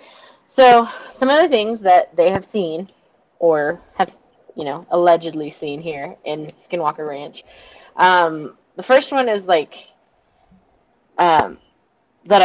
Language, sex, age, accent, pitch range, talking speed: English, female, 20-39, American, 170-215 Hz, 130 wpm